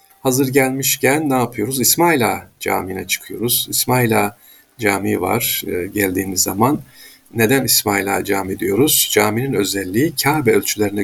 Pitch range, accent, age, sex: 100-130 Hz, native, 50-69, male